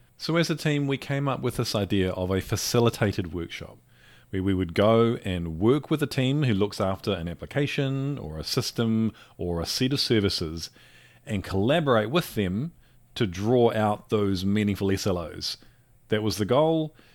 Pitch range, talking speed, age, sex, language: 95-120 Hz, 175 wpm, 30-49, male, English